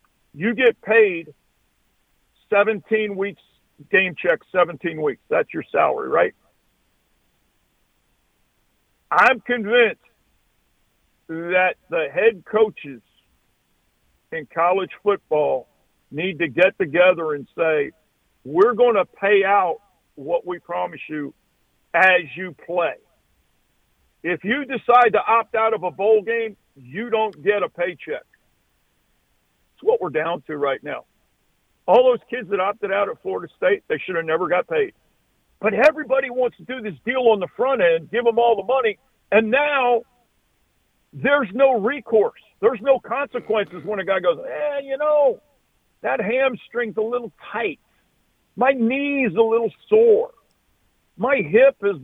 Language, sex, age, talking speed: English, male, 50-69, 140 wpm